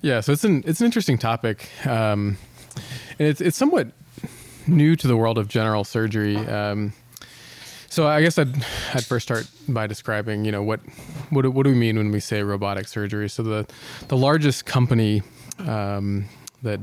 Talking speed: 180 wpm